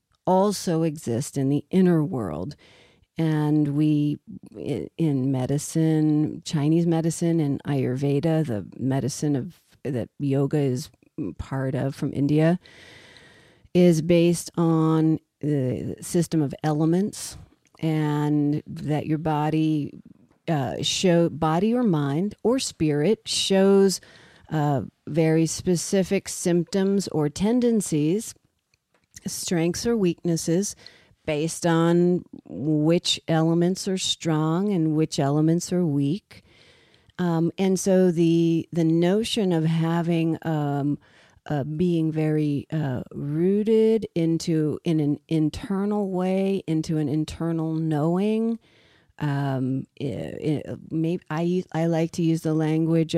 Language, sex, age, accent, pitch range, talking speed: English, female, 50-69, American, 150-175 Hz, 110 wpm